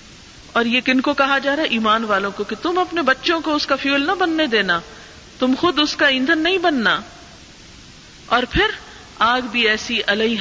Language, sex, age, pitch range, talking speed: Urdu, female, 50-69, 190-260 Hz, 200 wpm